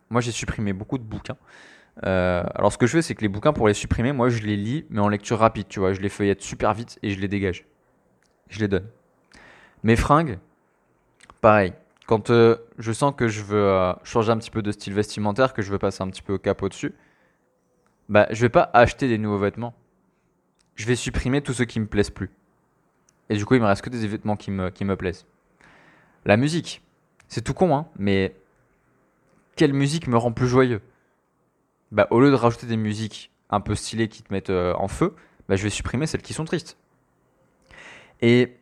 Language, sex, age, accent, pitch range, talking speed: French, male, 20-39, French, 100-120 Hz, 220 wpm